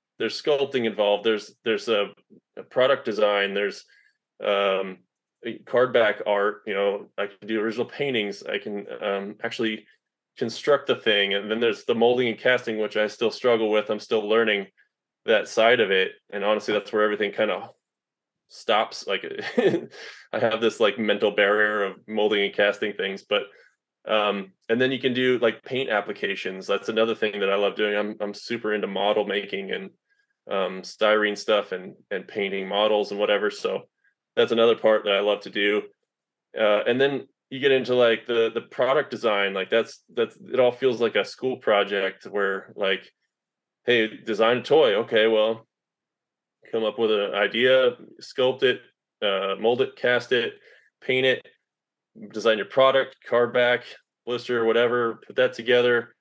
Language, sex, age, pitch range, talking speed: English, male, 20-39, 105-135 Hz, 170 wpm